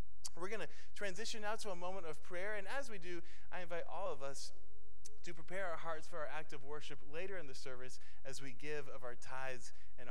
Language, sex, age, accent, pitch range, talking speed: English, male, 20-39, American, 115-160 Hz, 230 wpm